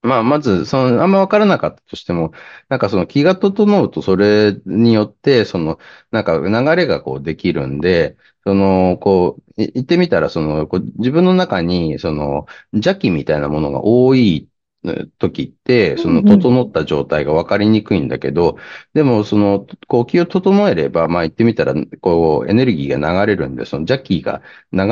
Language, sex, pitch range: Japanese, male, 80-125 Hz